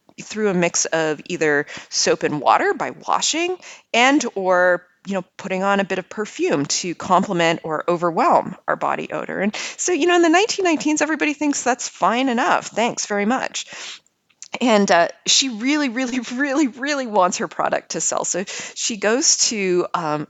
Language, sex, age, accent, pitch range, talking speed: English, female, 30-49, American, 155-230 Hz, 175 wpm